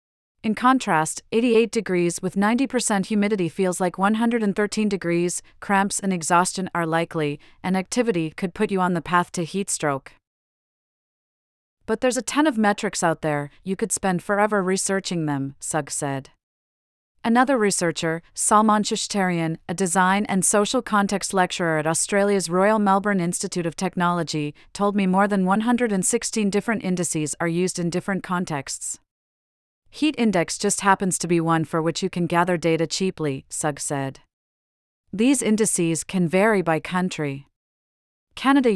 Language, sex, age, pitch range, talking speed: English, female, 30-49, 165-205 Hz, 145 wpm